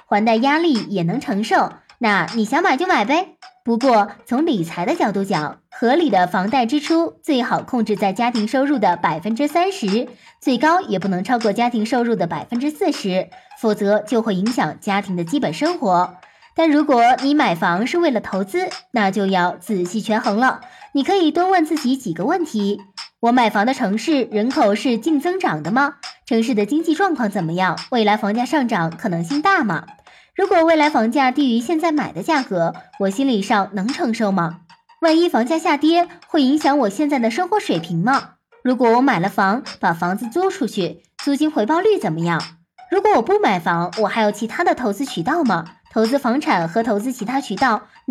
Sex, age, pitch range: male, 20-39, 205-310 Hz